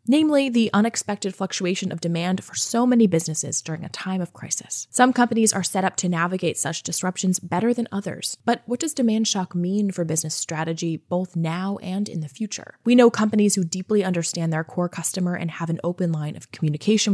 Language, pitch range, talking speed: English, 165-210 Hz, 205 wpm